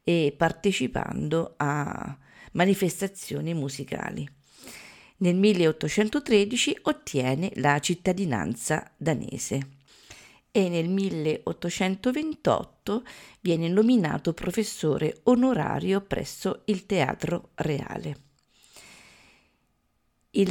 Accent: native